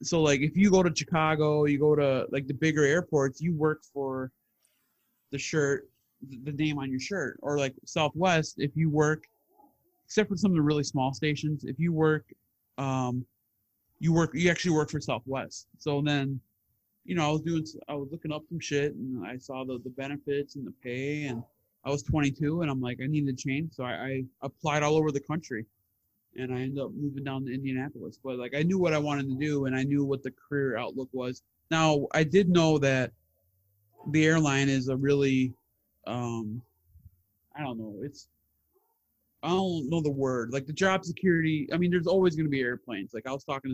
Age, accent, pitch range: 20-39, American, 125-155 Hz